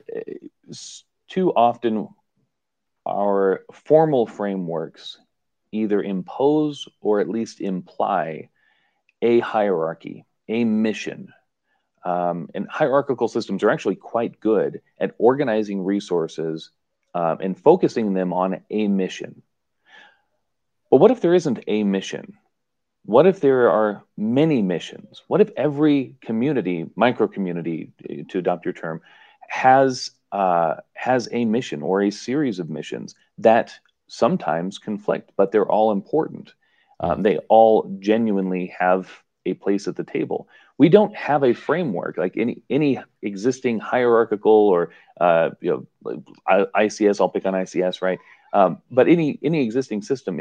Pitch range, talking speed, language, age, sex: 95-120 Hz, 130 wpm, English, 40-59, male